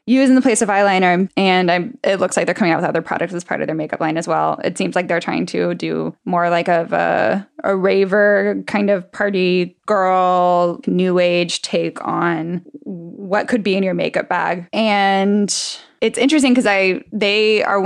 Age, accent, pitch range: 10-29, American, 170-205 Hz